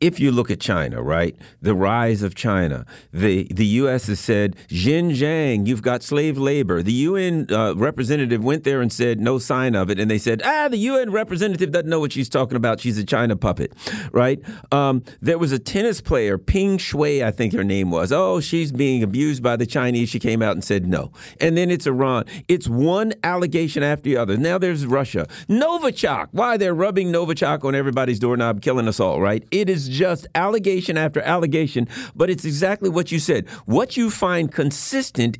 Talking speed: 200 wpm